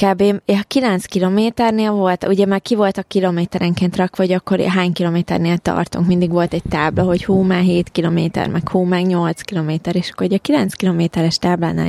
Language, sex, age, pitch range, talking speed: Hungarian, female, 20-39, 175-210 Hz, 185 wpm